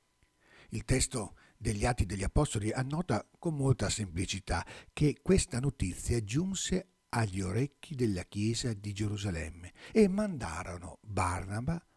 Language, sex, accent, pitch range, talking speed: Italian, male, native, 95-135 Hz, 115 wpm